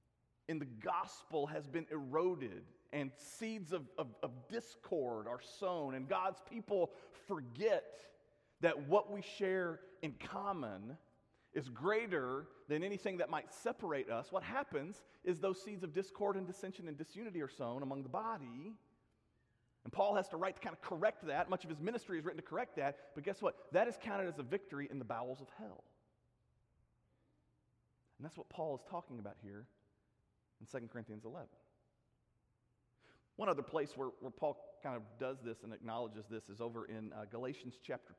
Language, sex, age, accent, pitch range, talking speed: English, male, 40-59, American, 125-190 Hz, 175 wpm